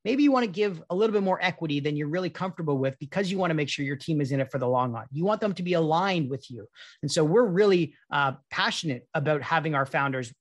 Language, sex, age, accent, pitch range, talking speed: English, male, 30-49, American, 140-190 Hz, 275 wpm